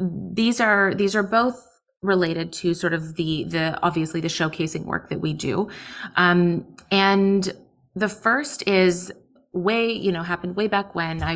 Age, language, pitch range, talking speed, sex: 20-39, English, 165-200 Hz, 165 wpm, female